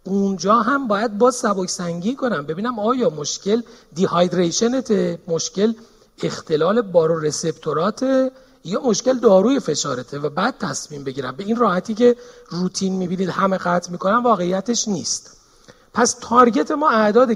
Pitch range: 170-245 Hz